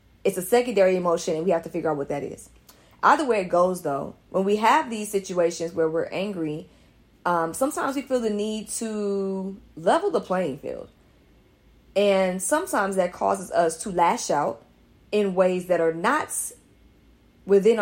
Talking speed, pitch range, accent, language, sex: 170 wpm, 170-220 Hz, American, English, female